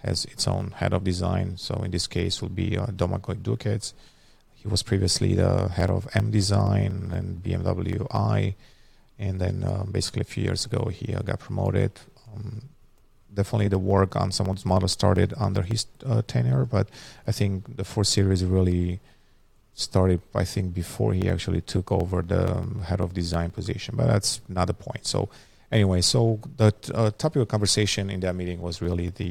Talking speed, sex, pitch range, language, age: 180 wpm, male, 95-110 Hz, English, 30-49